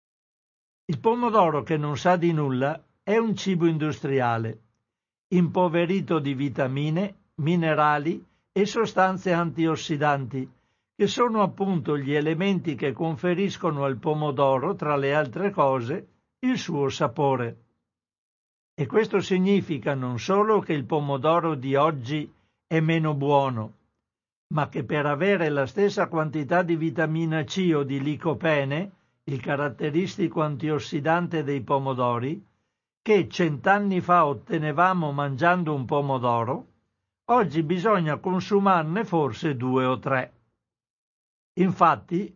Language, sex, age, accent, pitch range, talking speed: Italian, male, 60-79, native, 140-180 Hz, 115 wpm